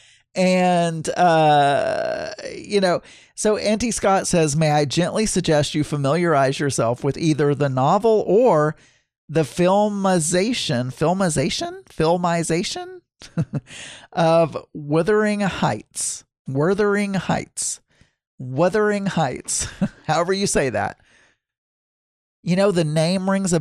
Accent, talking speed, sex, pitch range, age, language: American, 105 wpm, male, 135-185 Hz, 40-59, English